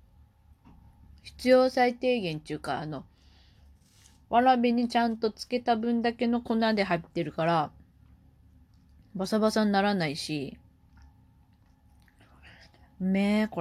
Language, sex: Japanese, female